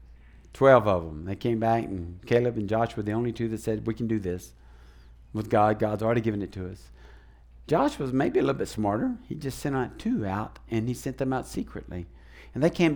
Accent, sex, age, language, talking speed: American, male, 60-79, English, 230 wpm